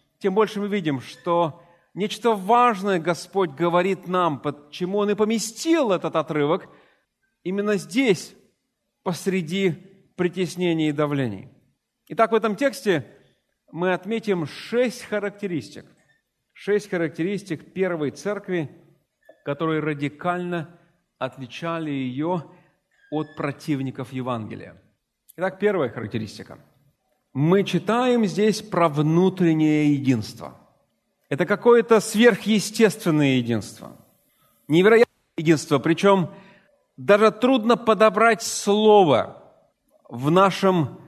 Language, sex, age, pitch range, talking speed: Russian, male, 40-59, 155-210 Hz, 90 wpm